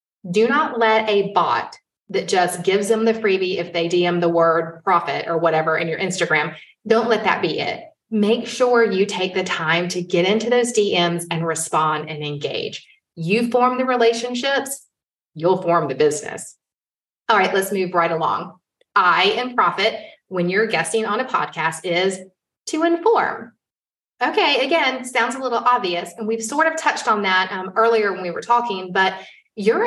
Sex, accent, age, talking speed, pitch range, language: female, American, 30-49, 180 wpm, 175-240 Hz, English